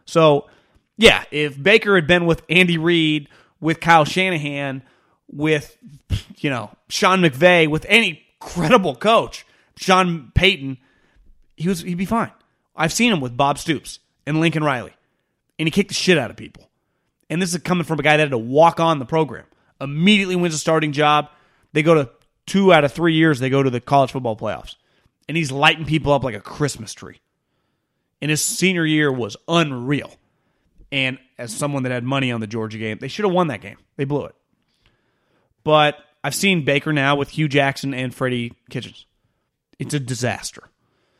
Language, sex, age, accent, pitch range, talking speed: English, male, 30-49, American, 130-165 Hz, 180 wpm